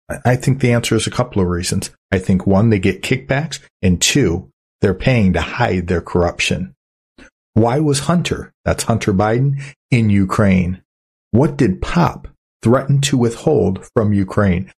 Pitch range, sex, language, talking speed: 95-120 Hz, male, English, 160 wpm